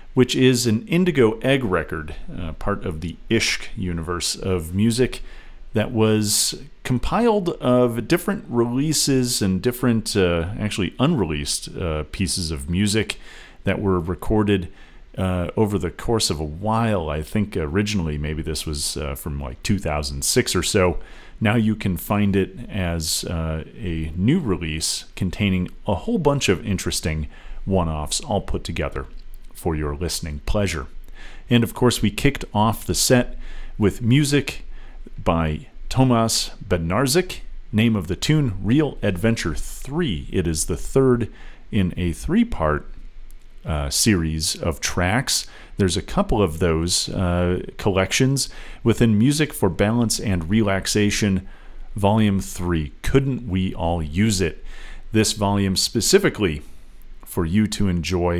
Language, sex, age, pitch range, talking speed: English, male, 40-59, 85-115 Hz, 135 wpm